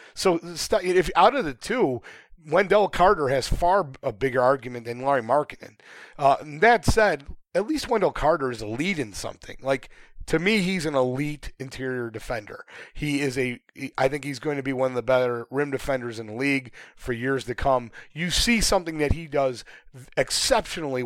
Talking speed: 180 wpm